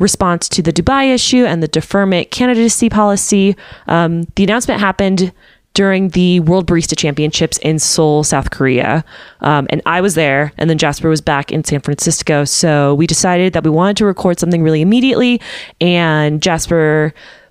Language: English